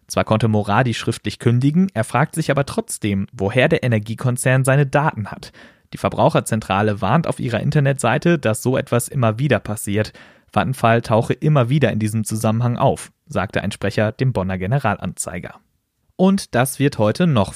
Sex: male